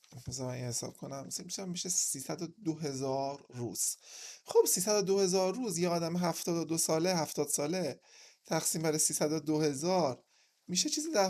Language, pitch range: Persian, 135-190 Hz